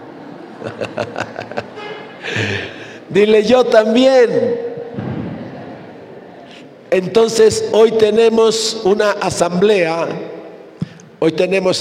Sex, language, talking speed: male, Spanish, 50 wpm